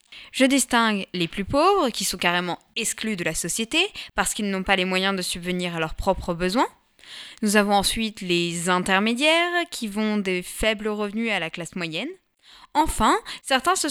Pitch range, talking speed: 190-275 Hz, 175 wpm